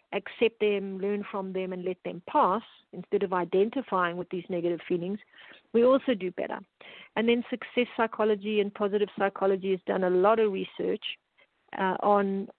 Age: 50-69